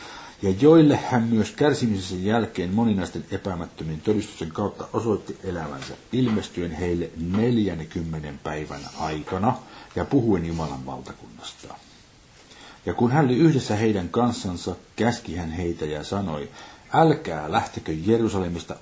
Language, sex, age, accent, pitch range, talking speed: Finnish, male, 60-79, native, 85-115 Hz, 110 wpm